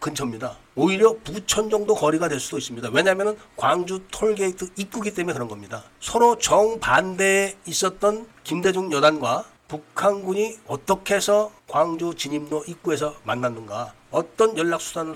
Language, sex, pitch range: Korean, male, 150-215 Hz